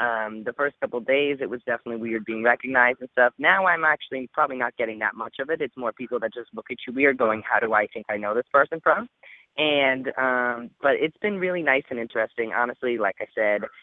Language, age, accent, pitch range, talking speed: English, 20-39, American, 115-140 Hz, 240 wpm